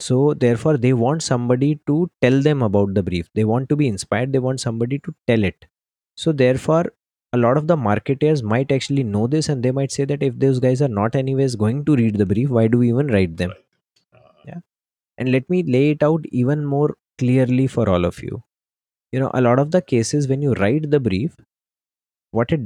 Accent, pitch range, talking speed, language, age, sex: Indian, 115-145 Hz, 220 wpm, English, 20-39, male